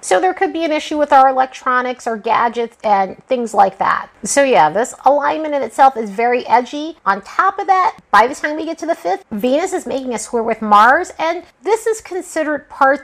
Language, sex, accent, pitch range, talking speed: English, female, American, 210-280 Hz, 220 wpm